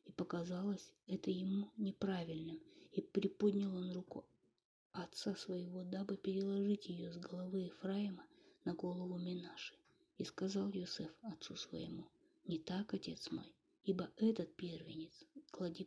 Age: 20-39